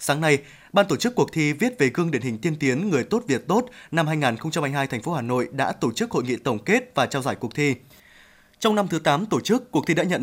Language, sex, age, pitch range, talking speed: Vietnamese, male, 20-39, 140-185 Hz, 270 wpm